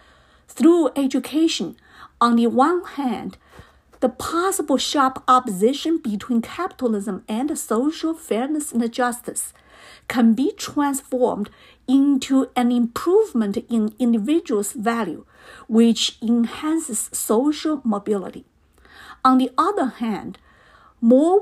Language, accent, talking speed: English, American, 100 wpm